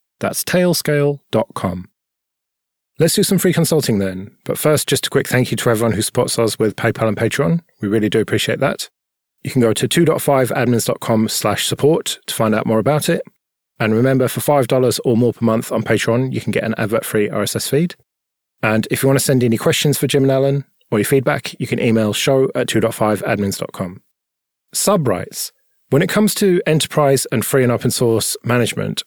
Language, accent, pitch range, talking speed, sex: English, British, 110-140 Hz, 190 wpm, male